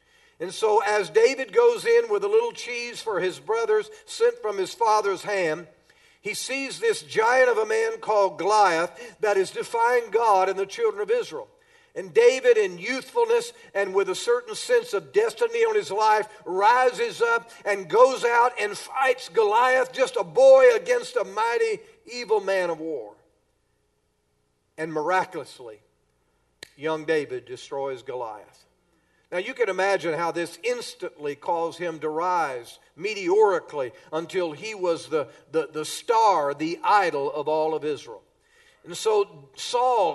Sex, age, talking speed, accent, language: male, 50-69, 150 wpm, American, English